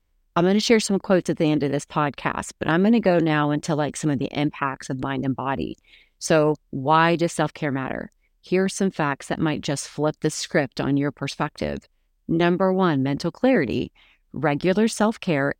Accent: American